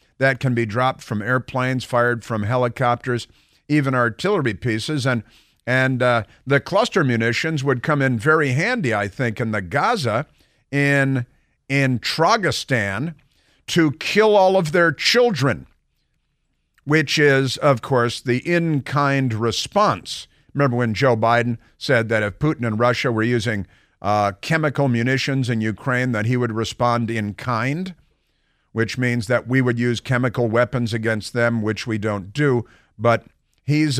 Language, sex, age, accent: English, male, 50-69, American